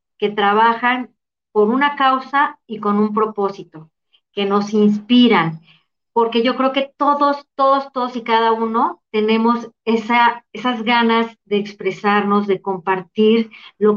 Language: Spanish